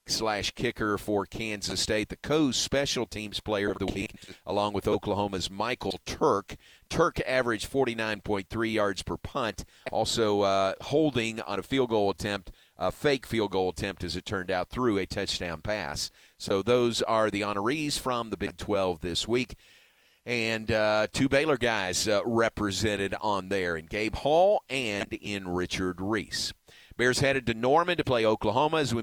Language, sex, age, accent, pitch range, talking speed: English, male, 40-59, American, 100-125 Hz, 165 wpm